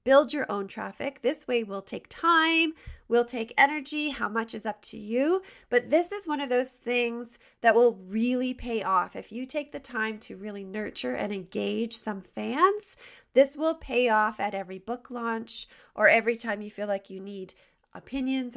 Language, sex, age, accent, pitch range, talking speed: English, female, 30-49, American, 210-265 Hz, 190 wpm